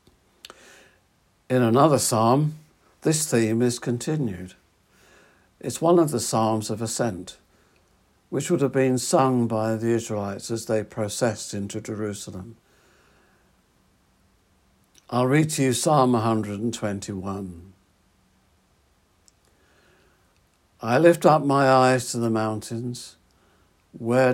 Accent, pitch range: British, 105-130 Hz